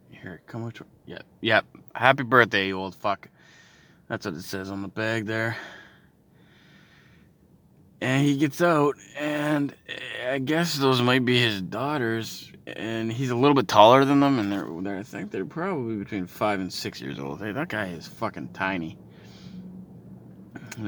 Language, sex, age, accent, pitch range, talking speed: English, male, 20-39, American, 90-130 Hz, 165 wpm